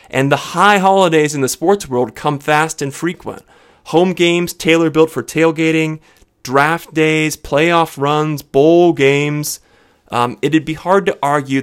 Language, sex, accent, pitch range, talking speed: English, male, American, 125-170 Hz, 150 wpm